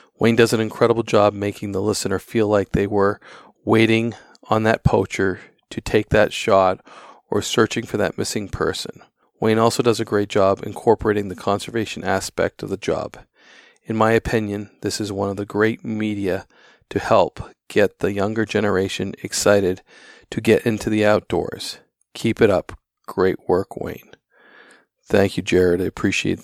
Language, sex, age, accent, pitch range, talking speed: English, male, 40-59, American, 100-115 Hz, 165 wpm